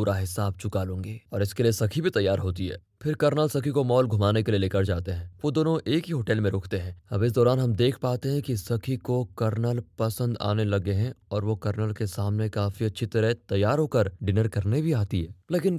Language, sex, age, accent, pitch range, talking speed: Hindi, male, 20-39, native, 100-140 Hz, 235 wpm